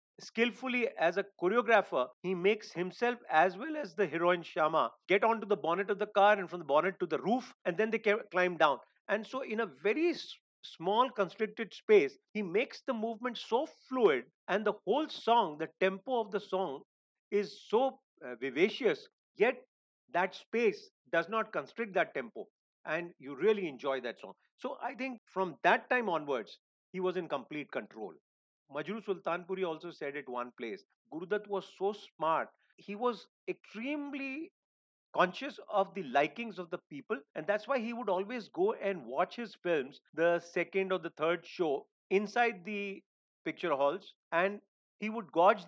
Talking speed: 175 wpm